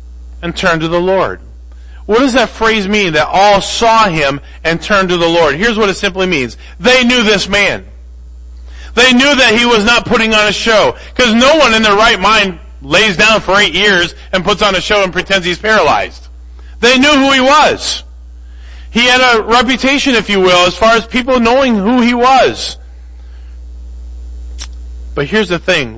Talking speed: 190 wpm